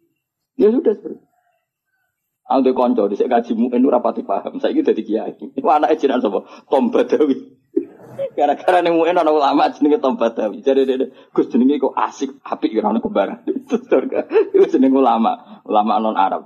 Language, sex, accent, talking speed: Indonesian, male, native, 140 wpm